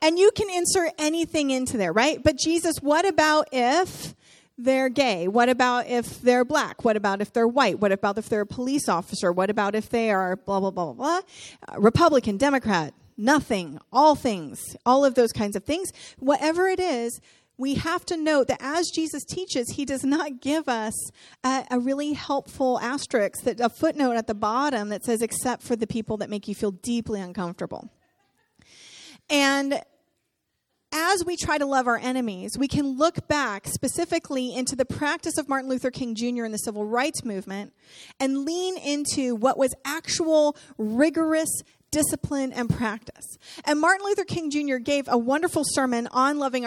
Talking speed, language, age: 180 wpm, English, 40-59